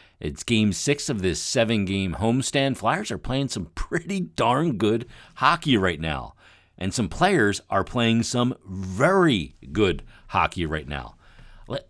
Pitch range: 85-120 Hz